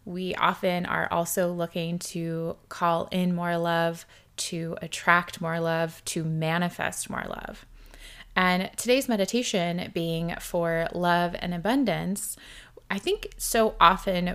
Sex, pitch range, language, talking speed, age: female, 170-200 Hz, English, 125 wpm, 20-39